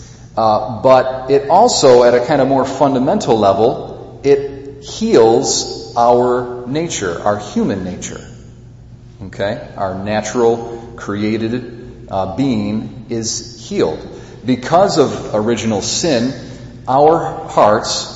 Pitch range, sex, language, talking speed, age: 105-125 Hz, male, English, 105 wpm, 40-59